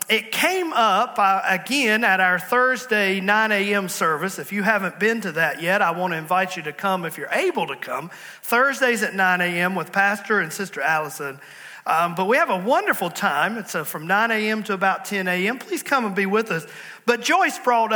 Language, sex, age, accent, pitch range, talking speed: English, male, 40-59, American, 185-240 Hz, 215 wpm